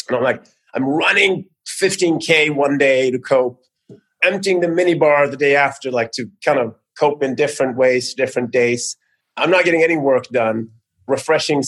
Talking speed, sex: 170 wpm, male